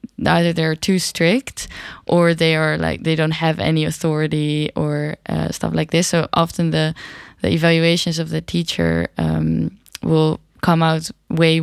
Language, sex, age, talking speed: English, female, 10-29, 165 wpm